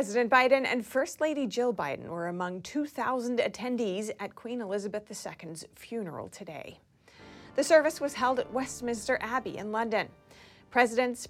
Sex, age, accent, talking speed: female, 30-49, American, 145 wpm